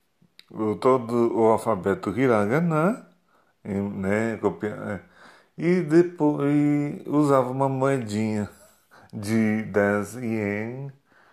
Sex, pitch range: male, 100-135 Hz